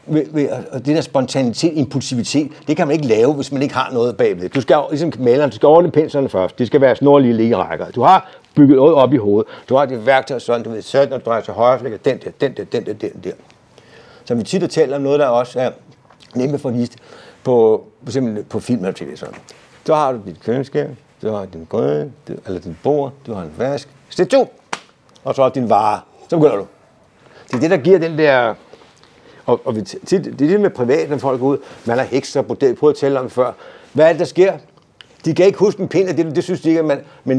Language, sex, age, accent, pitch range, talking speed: Danish, male, 60-79, native, 130-160 Hz, 250 wpm